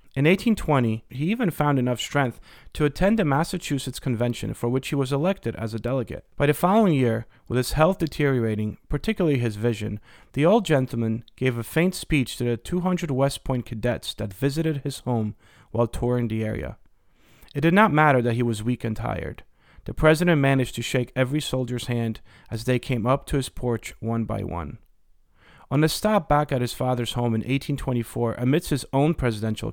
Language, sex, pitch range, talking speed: English, male, 115-145 Hz, 190 wpm